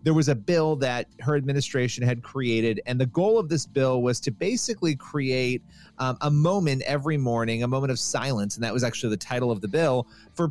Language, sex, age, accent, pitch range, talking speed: English, male, 30-49, American, 125-165 Hz, 215 wpm